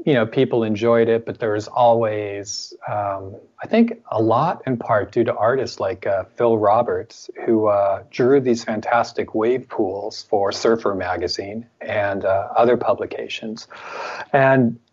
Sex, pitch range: male, 105-120 Hz